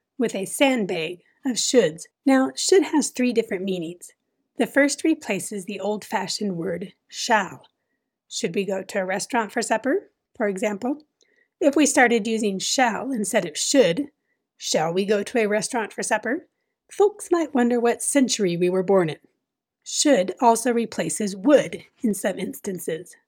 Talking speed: 155 wpm